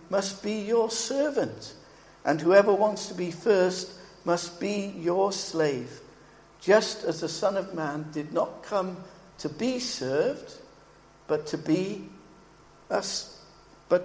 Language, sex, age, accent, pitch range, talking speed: English, male, 60-79, British, 160-220 Hz, 130 wpm